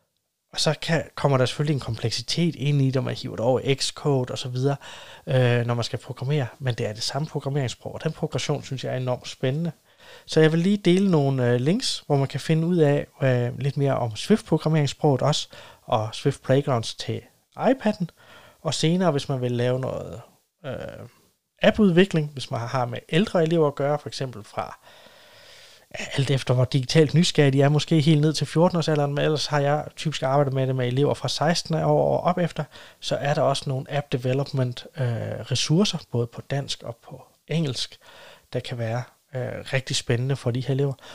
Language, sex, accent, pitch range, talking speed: Danish, male, native, 130-155 Hz, 195 wpm